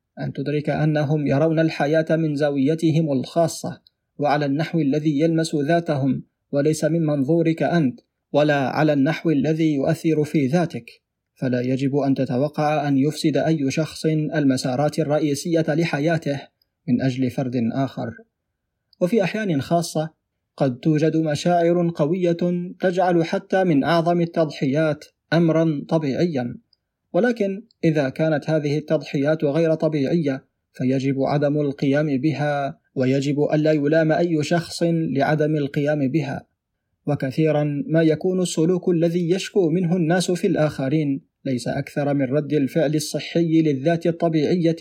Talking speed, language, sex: 120 wpm, Arabic, male